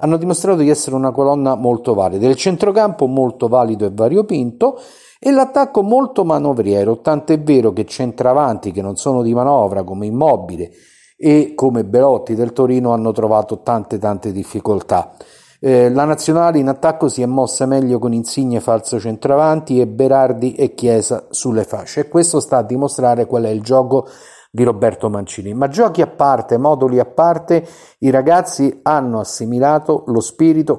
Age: 50-69